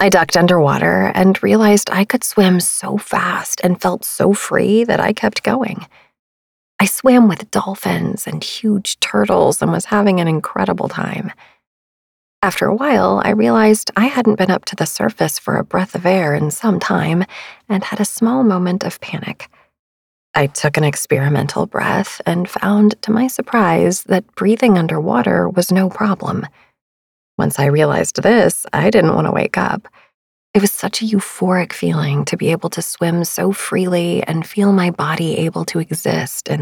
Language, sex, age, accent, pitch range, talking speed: English, female, 30-49, American, 160-205 Hz, 170 wpm